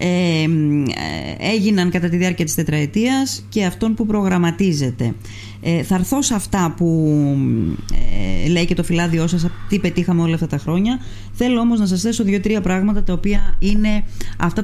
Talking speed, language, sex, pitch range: 160 wpm, Greek, female, 150-210 Hz